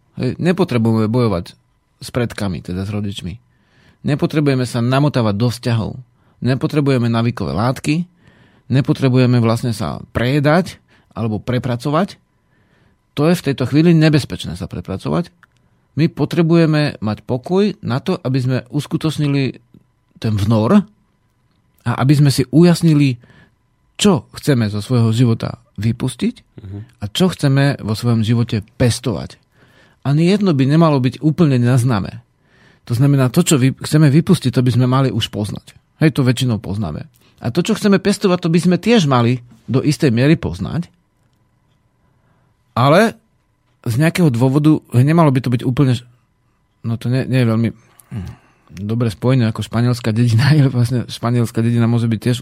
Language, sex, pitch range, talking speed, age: Slovak, male, 115-150 Hz, 140 wpm, 40-59